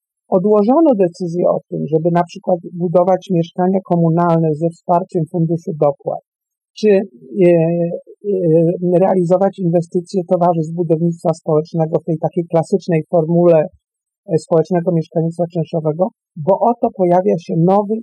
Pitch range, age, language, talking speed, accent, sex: 165-200 Hz, 50-69, Polish, 110 wpm, native, male